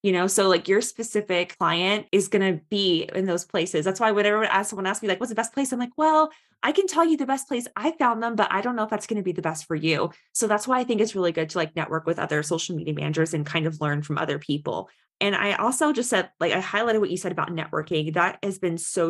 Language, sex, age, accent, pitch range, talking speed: English, female, 20-39, American, 170-215 Hz, 285 wpm